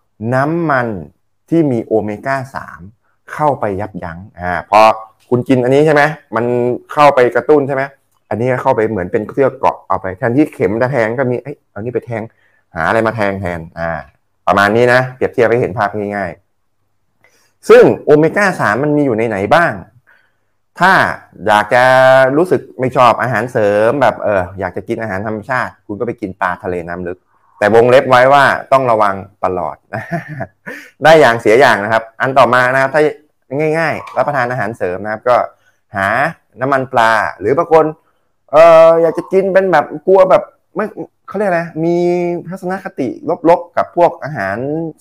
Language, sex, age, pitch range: Thai, male, 20-39, 105-150 Hz